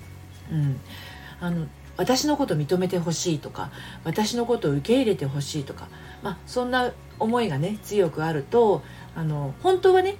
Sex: female